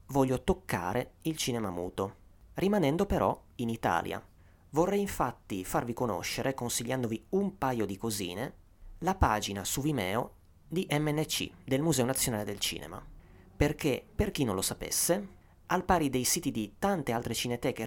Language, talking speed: Italian, 145 wpm